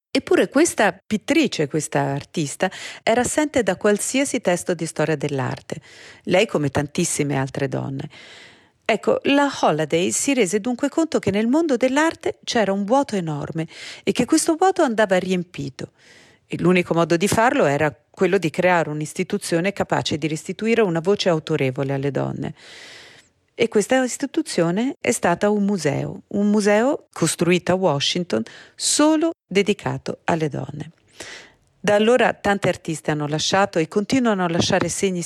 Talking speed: 145 wpm